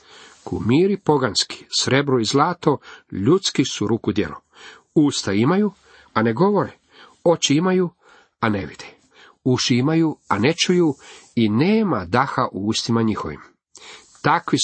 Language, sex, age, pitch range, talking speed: Croatian, male, 40-59, 105-145 Hz, 125 wpm